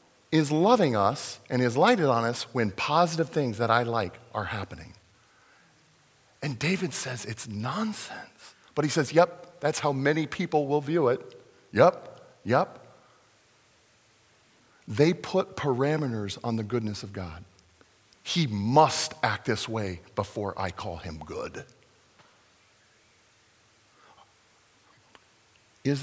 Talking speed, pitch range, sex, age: 120 wpm, 110-150 Hz, male, 40-59